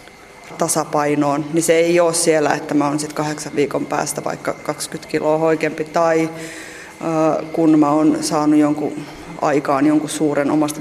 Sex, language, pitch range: female, Finnish, 150-170 Hz